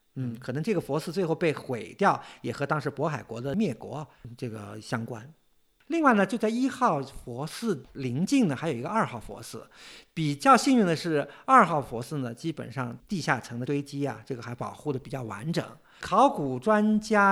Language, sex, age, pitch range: Chinese, male, 50-69, 130-190 Hz